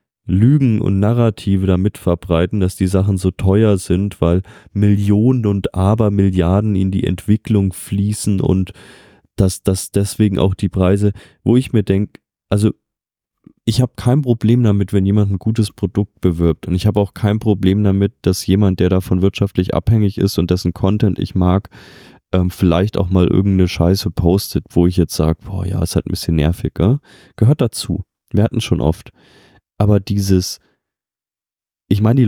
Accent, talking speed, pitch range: German, 170 wpm, 95-110 Hz